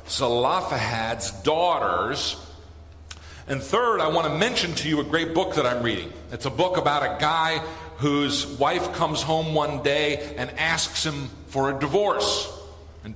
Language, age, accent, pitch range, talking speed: English, 50-69, American, 125-180 Hz, 160 wpm